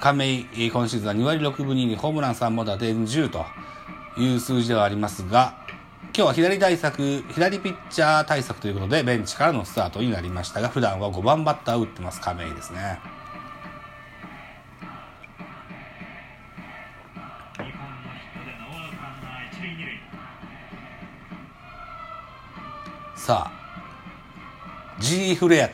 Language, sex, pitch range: Japanese, male, 105-155 Hz